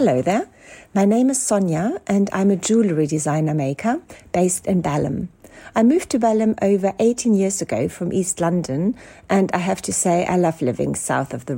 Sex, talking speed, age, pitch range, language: female, 190 wpm, 60-79, 170-220 Hz, English